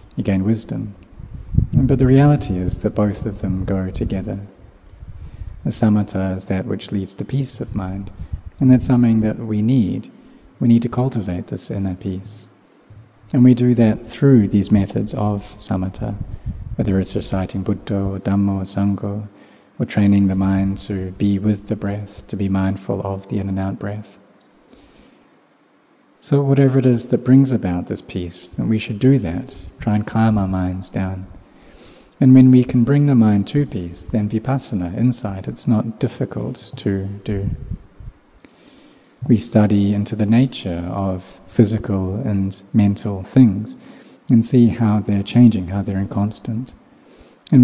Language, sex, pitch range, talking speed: English, male, 95-120 Hz, 160 wpm